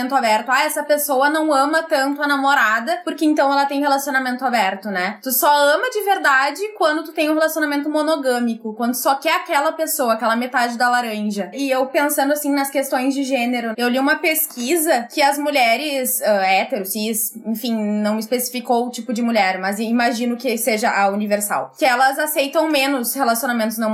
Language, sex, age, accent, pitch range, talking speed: Portuguese, female, 20-39, Brazilian, 225-290 Hz, 180 wpm